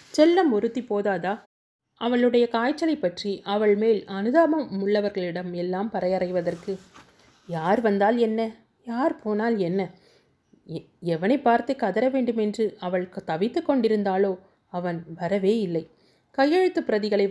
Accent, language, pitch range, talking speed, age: native, Tamil, 185-230 Hz, 105 wpm, 30-49